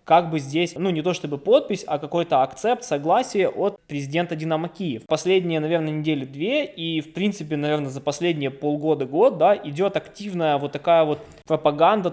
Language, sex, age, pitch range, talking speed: Russian, male, 20-39, 140-170 Hz, 170 wpm